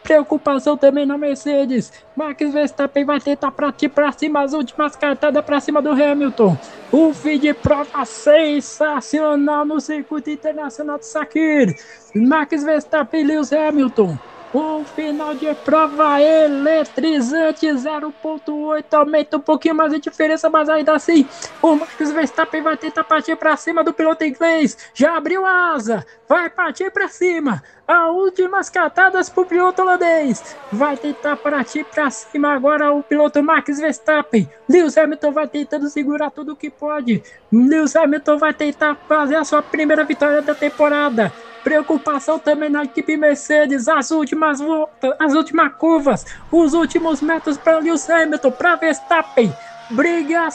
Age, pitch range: 20-39, 290-330 Hz